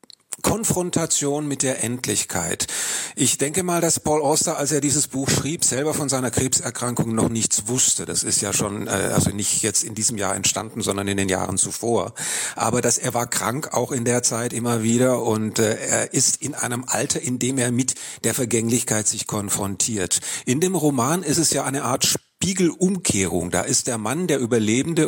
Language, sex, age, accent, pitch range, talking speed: German, male, 40-59, German, 110-135 Hz, 190 wpm